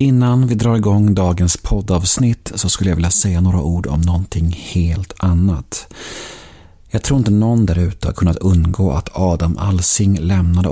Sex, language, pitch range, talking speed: male, Swedish, 90-110 Hz, 170 wpm